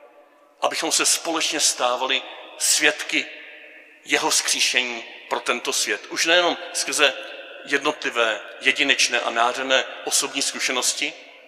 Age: 40-59